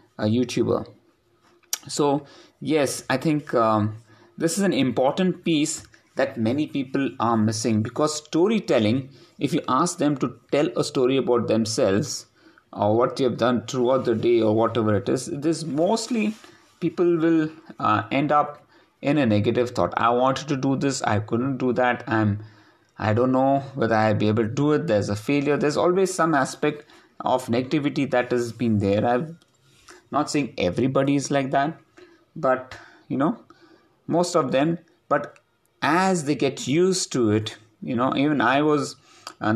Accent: Indian